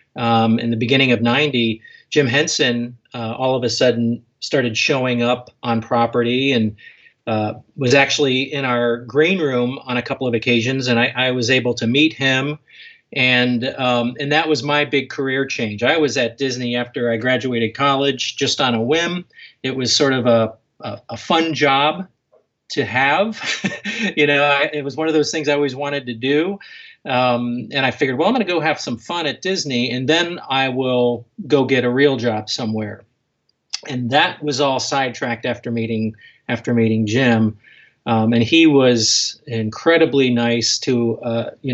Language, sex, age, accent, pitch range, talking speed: English, male, 40-59, American, 120-145 Hz, 185 wpm